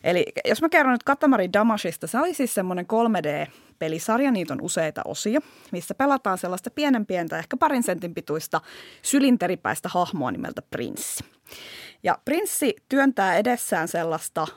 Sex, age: female, 20-39